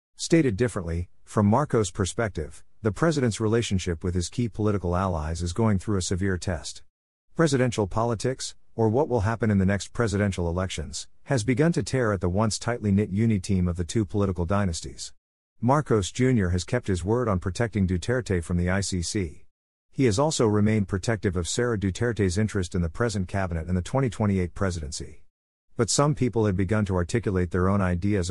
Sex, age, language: male, 50-69, English